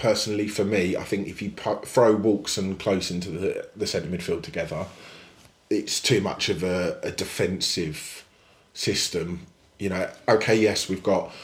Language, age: English, 20-39